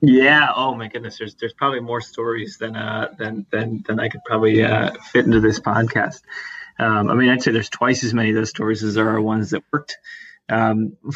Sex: male